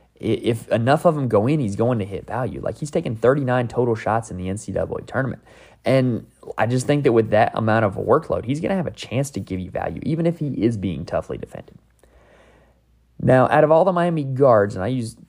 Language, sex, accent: English, male, American